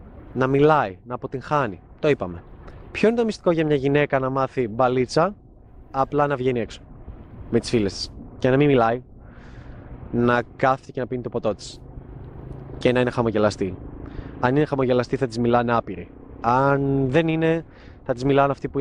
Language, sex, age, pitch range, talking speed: Greek, male, 20-39, 115-145 Hz, 170 wpm